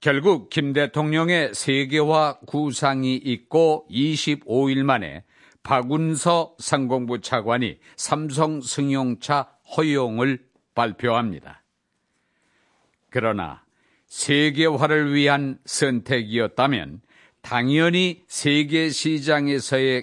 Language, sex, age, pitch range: Korean, male, 50-69, 125-150 Hz